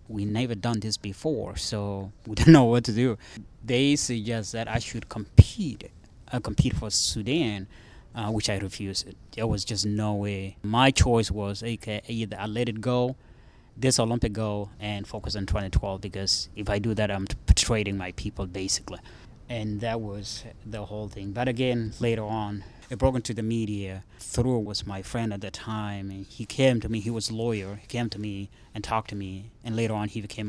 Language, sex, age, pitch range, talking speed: English, male, 20-39, 100-115 Hz, 200 wpm